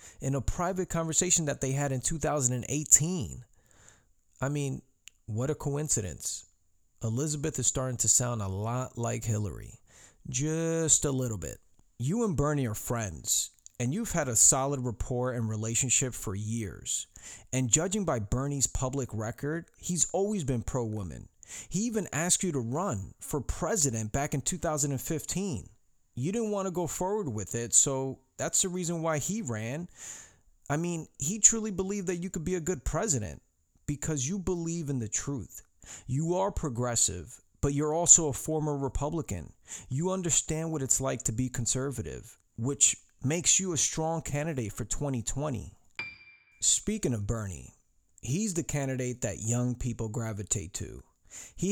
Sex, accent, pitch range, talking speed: male, American, 110-155 Hz, 155 wpm